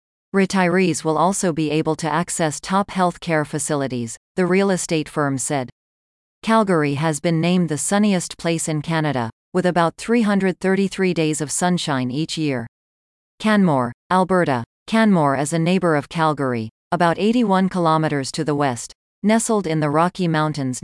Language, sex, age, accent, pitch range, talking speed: English, female, 40-59, American, 145-180 Hz, 150 wpm